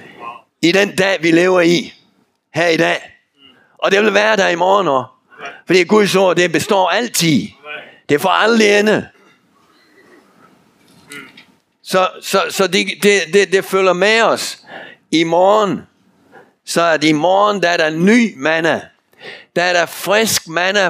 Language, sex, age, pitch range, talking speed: Danish, male, 60-79, 165-200 Hz, 155 wpm